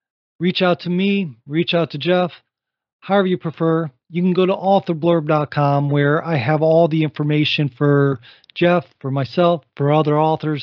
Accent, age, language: American, 40-59, English